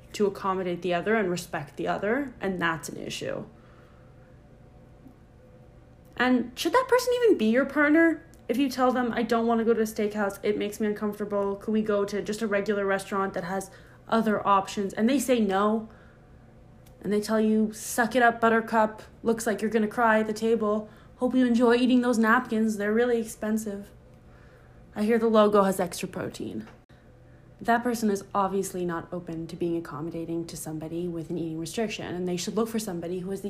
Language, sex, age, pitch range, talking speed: English, female, 20-39, 175-225 Hz, 190 wpm